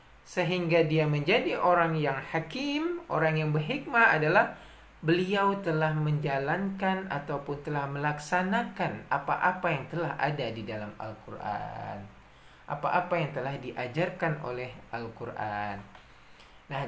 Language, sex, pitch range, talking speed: Indonesian, male, 160-235 Hz, 105 wpm